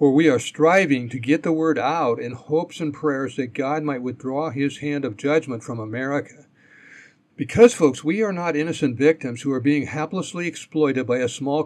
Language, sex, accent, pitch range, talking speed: English, male, American, 130-160 Hz, 195 wpm